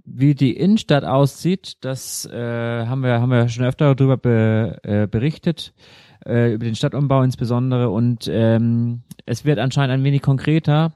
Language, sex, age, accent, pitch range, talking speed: German, male, 30-49, German, 110-130 Hz, 160 wpm